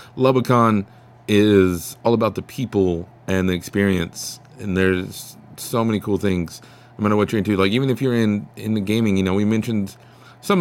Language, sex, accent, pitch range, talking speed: English, male, American, 95-115 Hz, 185 wpm